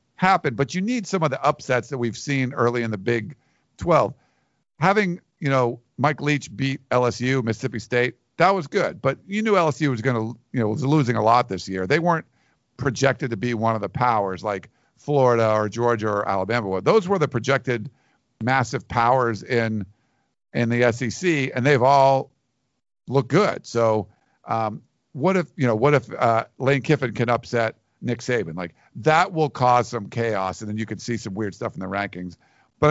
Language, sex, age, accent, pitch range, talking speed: English, male, 50-69, American, 115-145 Hz, 195 wpm